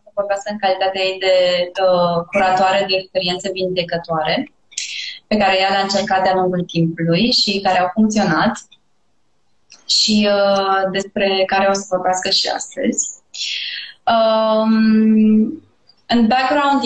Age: 20-39